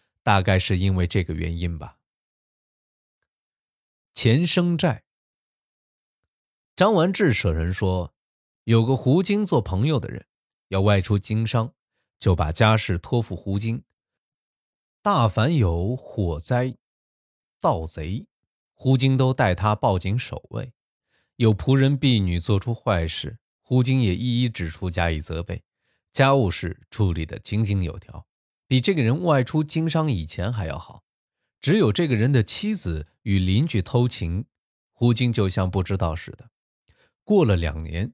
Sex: male